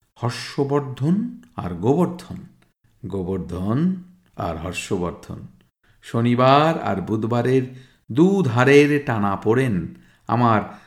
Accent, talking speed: native, 75 wpm